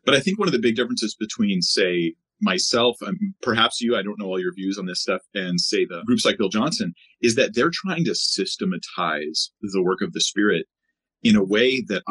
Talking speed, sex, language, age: 225 wpm, male, English, 30-49